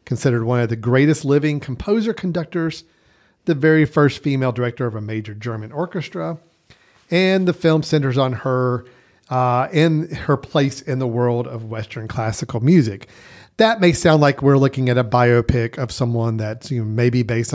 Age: 40-59